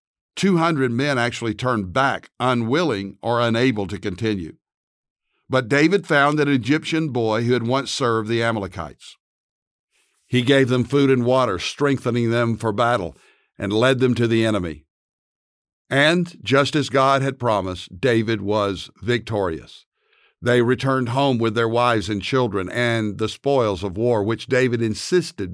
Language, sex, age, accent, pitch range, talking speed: English, male, 60-79, American, 105-135 Hz, 150 wpm